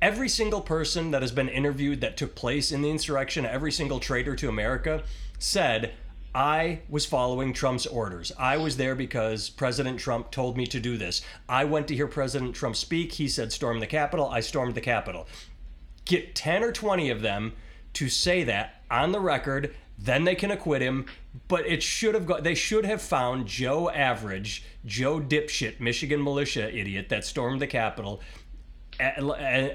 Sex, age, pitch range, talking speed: male, 30-49, 115-150 Hz, 180 wpm